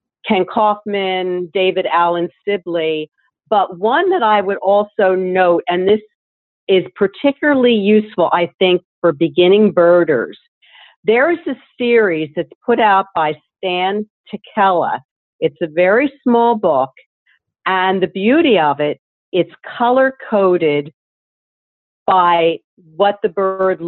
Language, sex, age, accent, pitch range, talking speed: English, female, 50-69, American, 170-205 Hz, 120 wpm